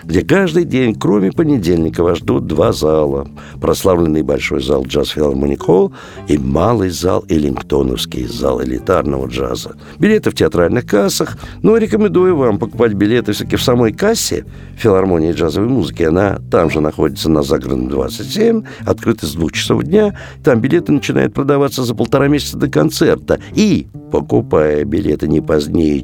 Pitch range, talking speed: 80-125 Hz, 145 wpm